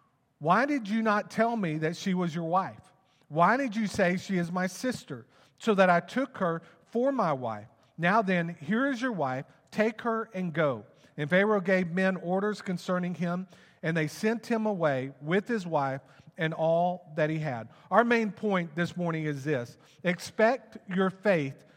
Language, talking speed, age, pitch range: English, 185 wpm, 50-69, 170-210 Hz